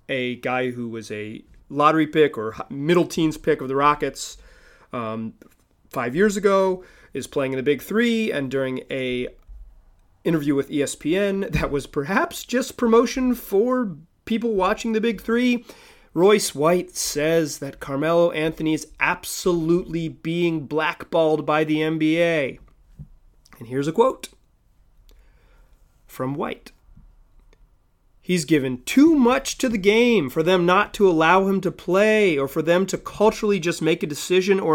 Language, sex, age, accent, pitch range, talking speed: English, male, 30-49, American, 145-205 Hz, 145 wpm